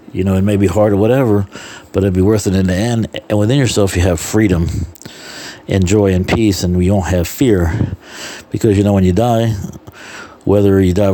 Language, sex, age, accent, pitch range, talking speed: English, male, 60-79, American, 90-105 Hz, 215 wpm